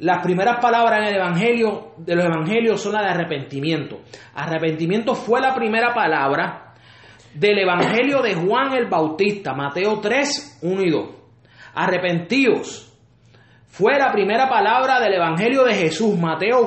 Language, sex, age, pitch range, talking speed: Spanish, male, 30-49, 180-255 Hz, 140 wpm